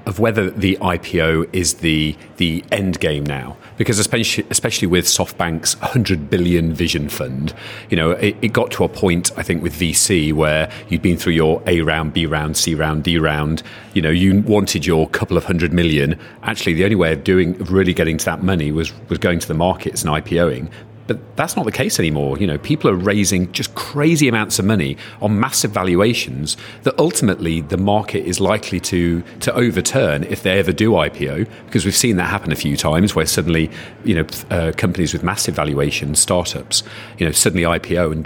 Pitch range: 80-110 Hz